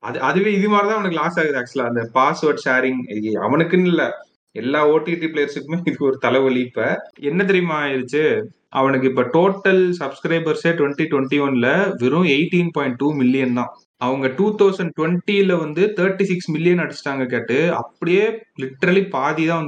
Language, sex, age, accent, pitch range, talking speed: Tamil, male, 30-49, native, 125-170 Hz, 105 wpm